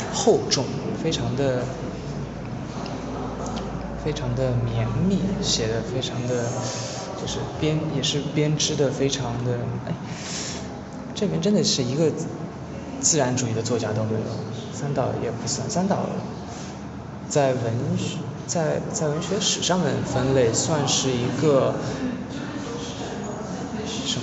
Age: 20-39